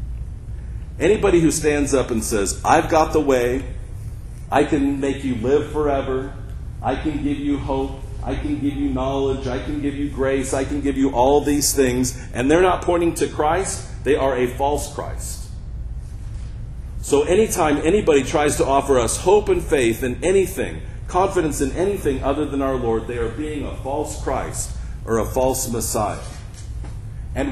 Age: 40-59